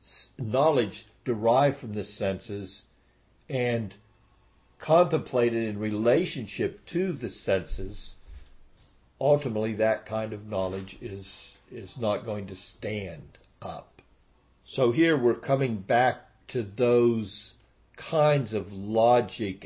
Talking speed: 105 wpm